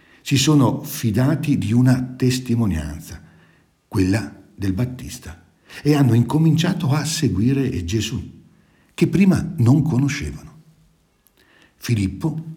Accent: native